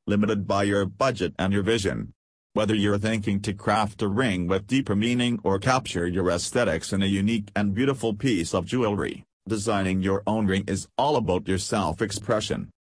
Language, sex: English, male